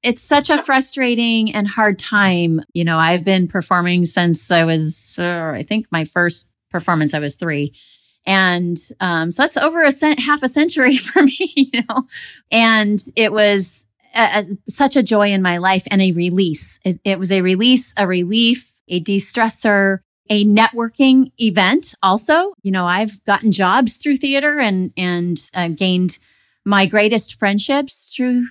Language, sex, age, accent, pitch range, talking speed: English, female, 30-49, American, 180-230 Hz, 160 wpm